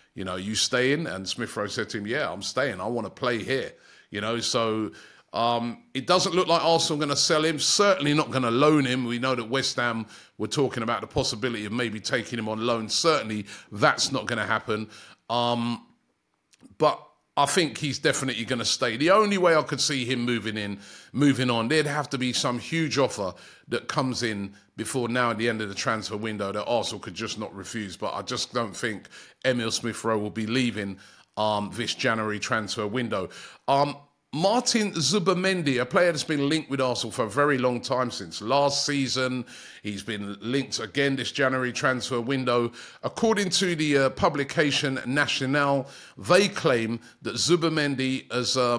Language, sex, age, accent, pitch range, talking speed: English, male, 30-49, British, 115-145 Hz, 195 wpm